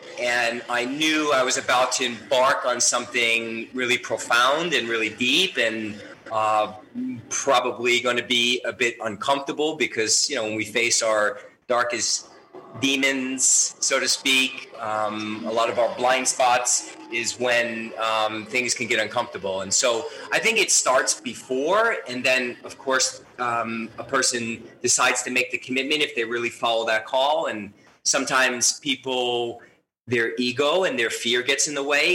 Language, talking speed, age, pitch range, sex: English, 160 wpm, 30-49, 115-135 Hz, male